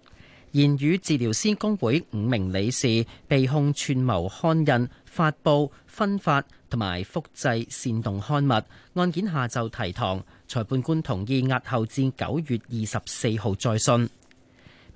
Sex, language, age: male, Chinese, 40-59